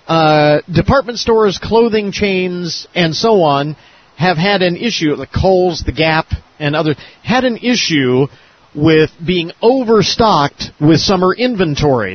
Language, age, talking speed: English, 40-59, 140 wpm